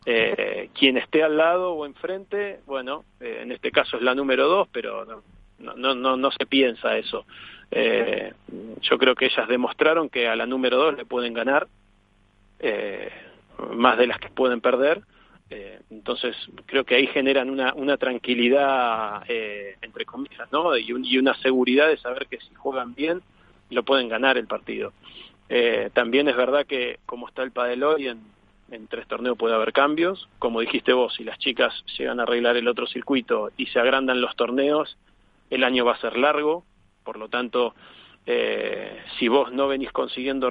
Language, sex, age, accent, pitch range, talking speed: Spanish, male, 40-59, Argentinian, 125-165 Hz, 180 wpm